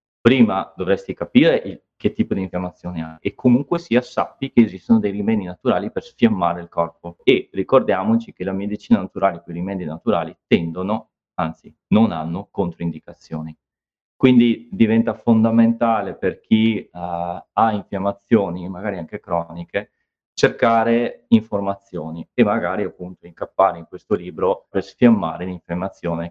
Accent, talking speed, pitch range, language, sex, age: native, 135 wpm, 85-115 Hz, Italian, male, 30-49